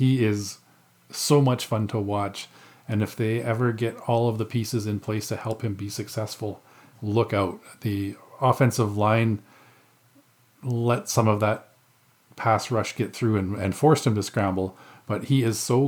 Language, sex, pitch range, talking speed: English, male, 100-120 Hz, 175 wpm